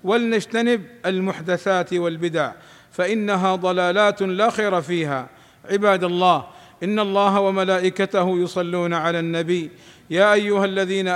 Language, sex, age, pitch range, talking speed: Arabic, male, 50-69, 175-200 Hz, 100 wpm